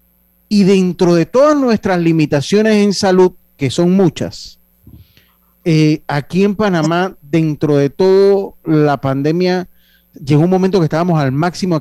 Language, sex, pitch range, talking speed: Spanish, male, 130-175 Hz, 140 wpm